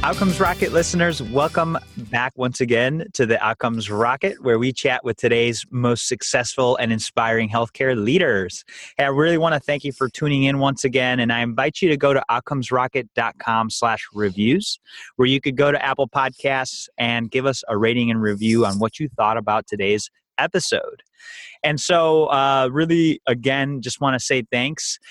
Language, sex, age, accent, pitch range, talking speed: English, male, 30-49, American, 115-140 Hz, 180 wpm